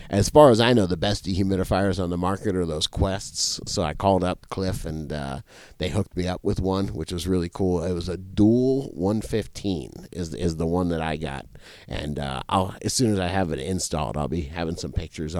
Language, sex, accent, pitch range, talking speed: English, male, American, 90-115 Hz, 225 wpm